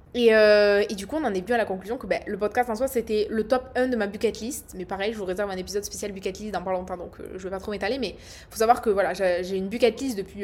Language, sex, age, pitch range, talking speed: French, female, 20-39, 210-260 Hz, 335 wpm